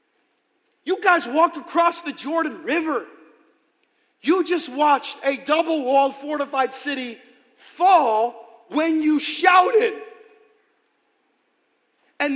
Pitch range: 255-365 Hz